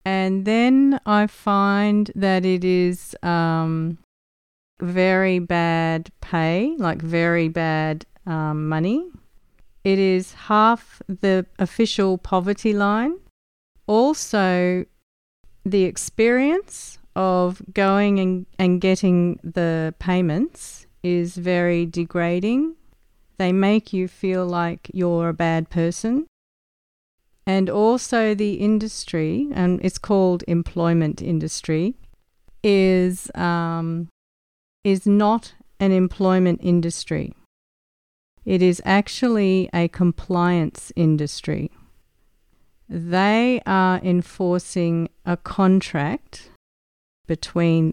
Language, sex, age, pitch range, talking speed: English, female, 40-59, 170-200 Hz, 90 wpm